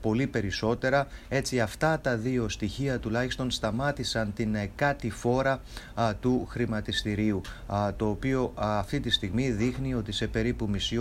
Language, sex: English, male